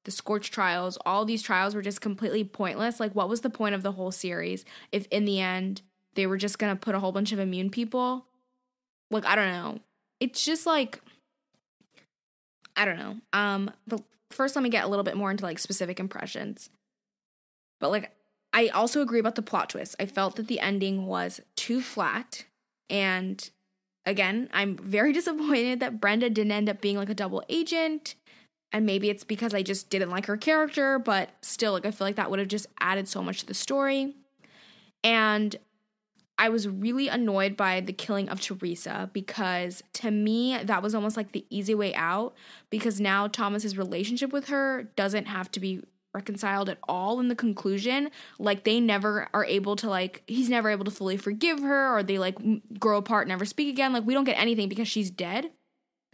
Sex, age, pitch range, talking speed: female, 20-39, 195-235 Hz, 195 wpm